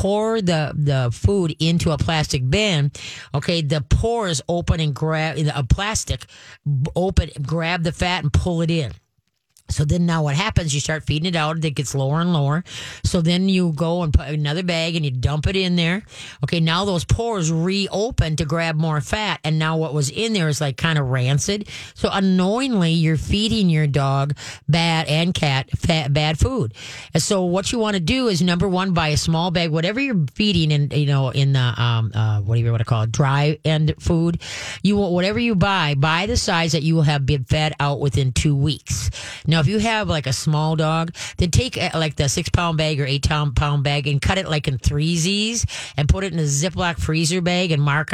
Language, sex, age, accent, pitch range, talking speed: English, female, 40-59, American, 140-170 Hz, 215 wpm